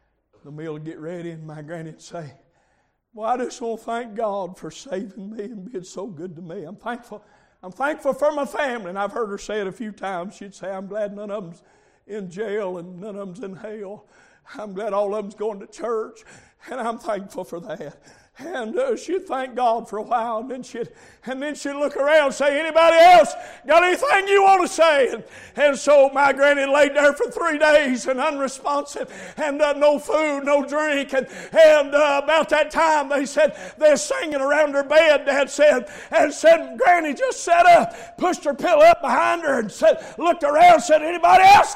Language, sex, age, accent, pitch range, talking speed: English, male, 60-79, American, 210-310 Hz, 215 wpm